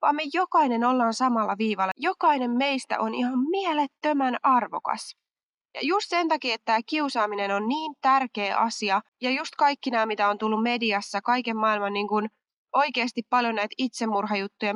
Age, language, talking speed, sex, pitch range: 20-39, Finnish, 160 wpm, female, 215-290 Hz